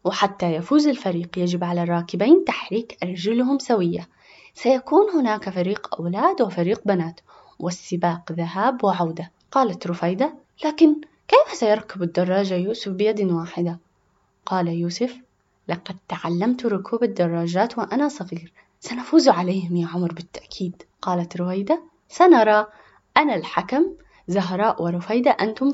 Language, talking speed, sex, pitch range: Arabic, 110 wpm, female, 175-285 Hz